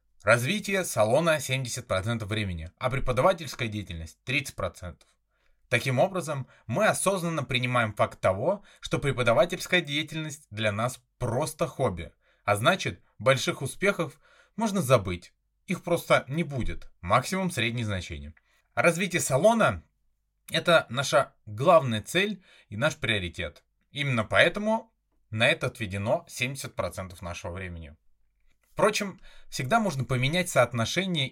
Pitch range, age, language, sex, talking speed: 110-165 Hz, 20-39, Russian, male, 110 wpm